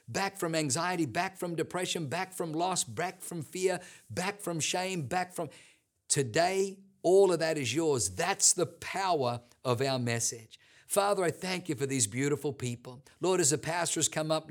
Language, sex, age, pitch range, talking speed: English, male, 50-69, 130-165 Hz, 180 wpm